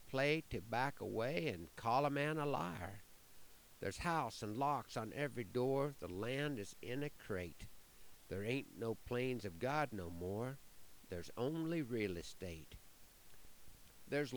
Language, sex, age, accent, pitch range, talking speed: English, male, 50-69, American, 95-140 Hz, 150 wpm